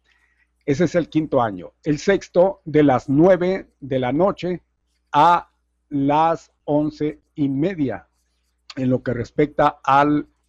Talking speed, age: 130 wpm, 50-69